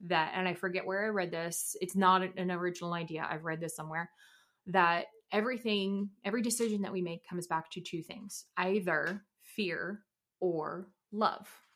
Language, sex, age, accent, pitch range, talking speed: English, female, 20-39, American, 180-215 Hz, 170 wpm